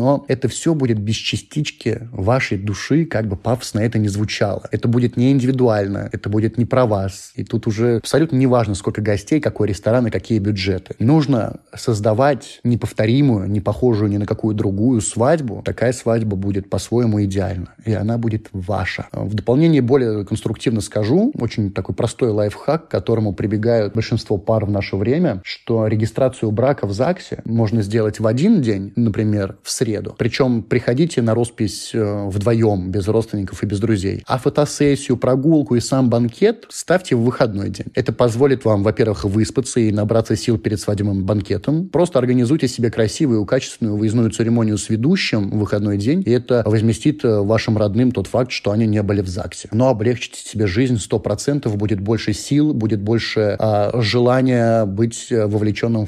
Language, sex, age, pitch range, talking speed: Russian, male, 20-39, 105-125 Hz, 165 wpm